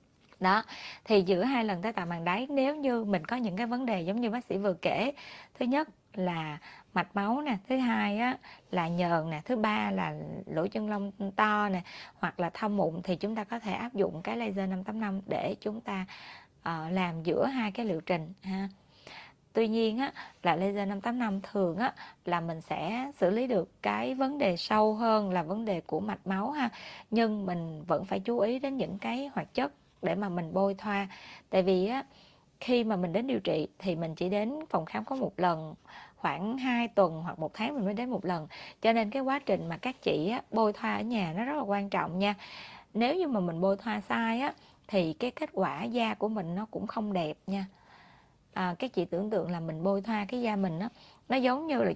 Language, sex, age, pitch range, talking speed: Vietnamese, female, 20-39, 185-235 Hz, 225 wpm